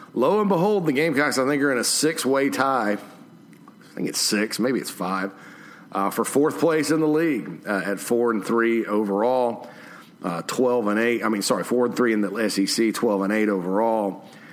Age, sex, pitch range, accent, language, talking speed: 50-69, male, 100-130 Hz, American, English, 200 wpm